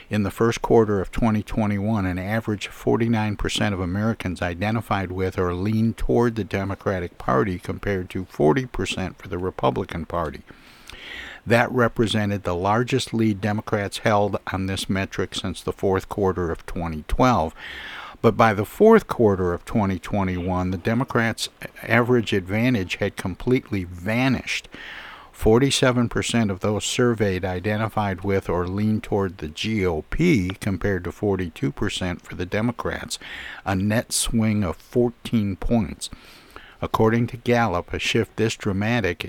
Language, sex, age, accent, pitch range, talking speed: English, male, 60-79, American, 95-110 Hz, 130 wpm